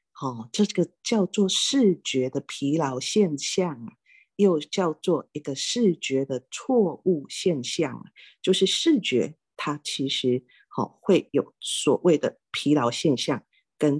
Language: Chinese